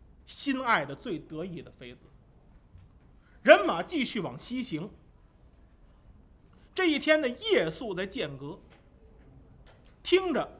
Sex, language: male, Chinese